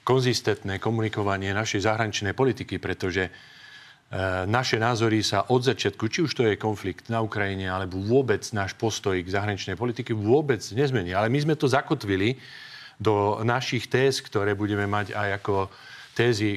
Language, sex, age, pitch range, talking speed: Slovak, male, 40-59, 100-130 Hz, 150 wpm